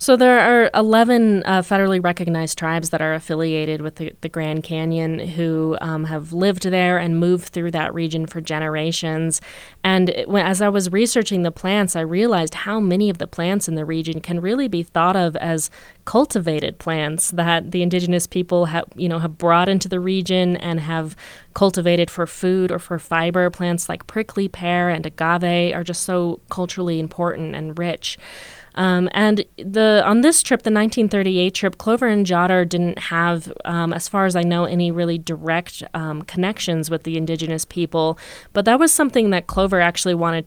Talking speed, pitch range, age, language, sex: 180 wpm, 165-190 Hz, 20-39, English, female